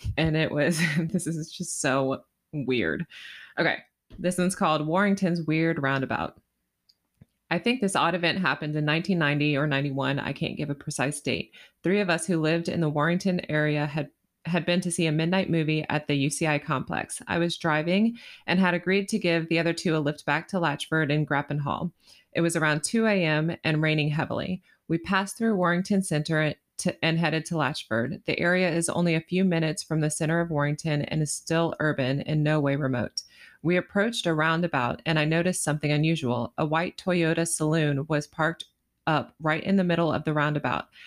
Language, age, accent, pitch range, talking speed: English, 20-39, American, 150-175 Hz, 190 wpm